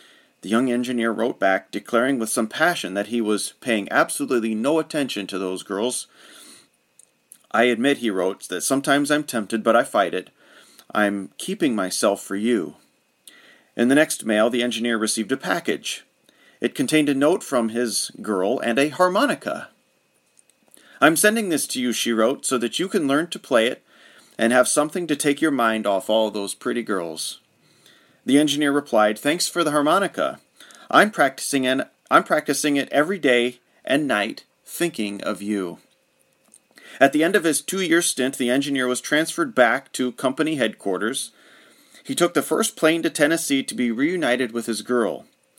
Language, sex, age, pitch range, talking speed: English, male, 40-59, 110-150 Hz, 170 wpm